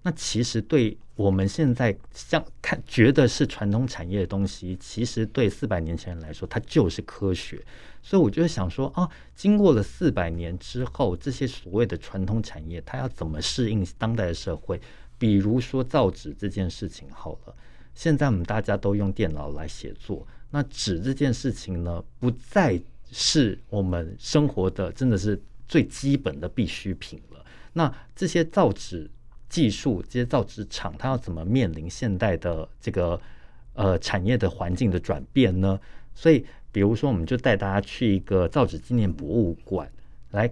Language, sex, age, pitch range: Chinese, male, 50-69, 90-120 Hz